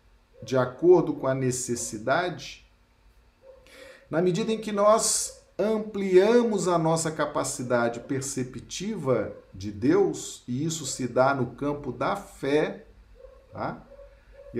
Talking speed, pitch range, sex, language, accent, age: 105 wpm, 125-195 Hz, male, Portuguese, Brazilian, 50-69